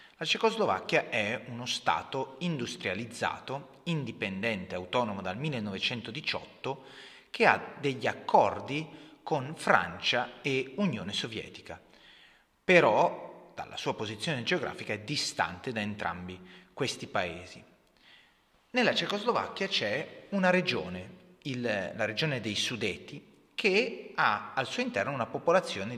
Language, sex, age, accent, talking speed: Italian, male, 30-49, native, 105 wpm